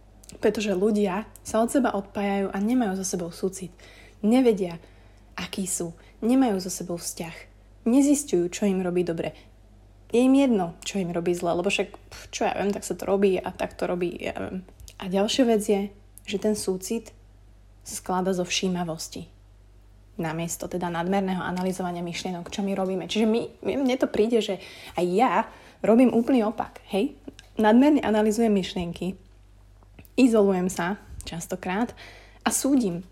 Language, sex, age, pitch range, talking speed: Slovak, female, 30-49, 175-220 Hz, 150 wpm